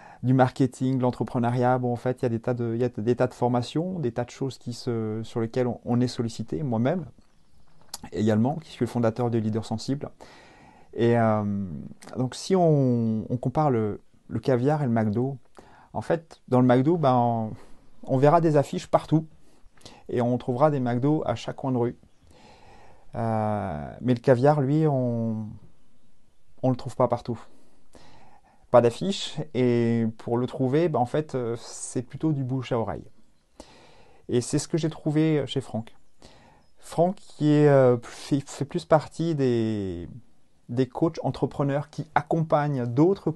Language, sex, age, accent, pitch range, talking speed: French, male, 30-49, French, 115-145 Hz, 170 wpm